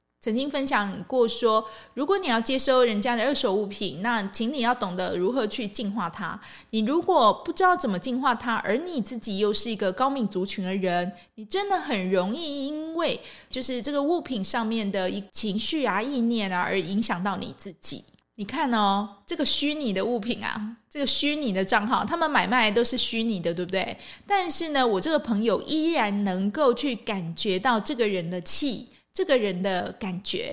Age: 20-39